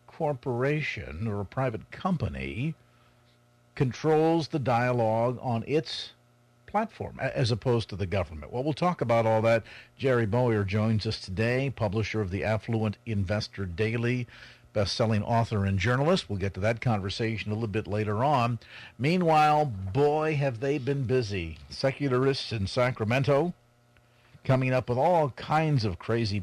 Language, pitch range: English, 110-135 Hz